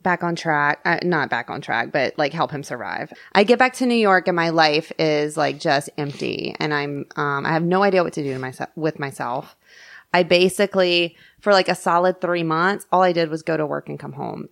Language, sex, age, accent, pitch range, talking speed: English, female, 20-39, American, 160-205 Hz, 240 wpm